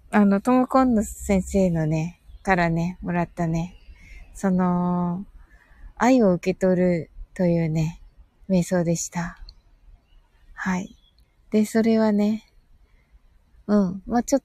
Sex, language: female, Japanese